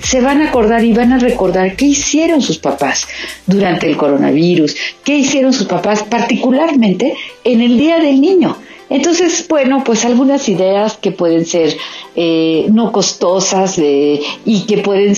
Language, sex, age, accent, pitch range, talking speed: Spanish, female, 50-69, Mexican, 165-220 Hz, 160 wpm